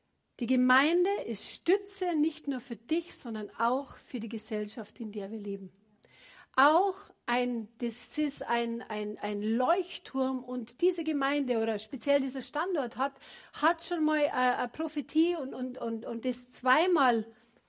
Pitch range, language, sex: 240-295 Hz, German, female